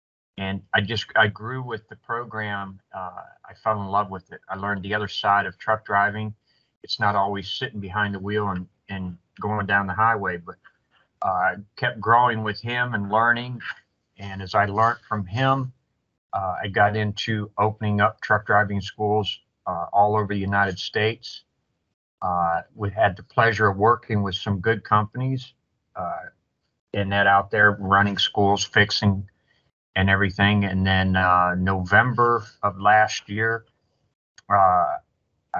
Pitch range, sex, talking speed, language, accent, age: 100-110 Hz, male, 160 wpm, English, American, 40-59